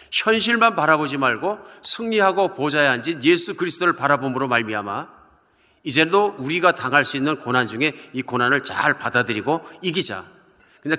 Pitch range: 125-180 Hz